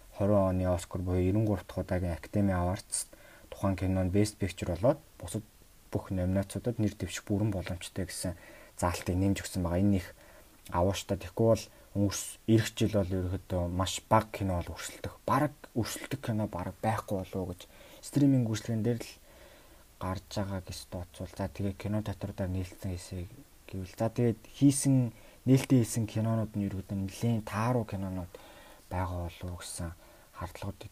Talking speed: 125 wpm